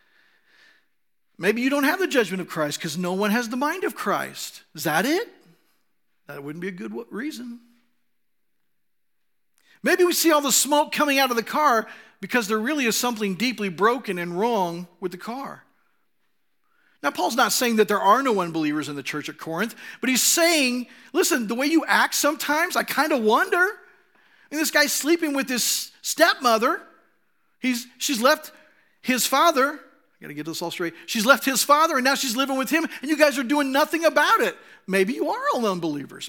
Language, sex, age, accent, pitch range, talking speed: English, male, 50-69, American, 190-290 Hz, 195 wpm